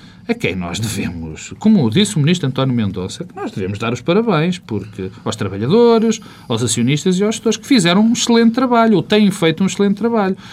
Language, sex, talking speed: Portuguese, male, 200 wpm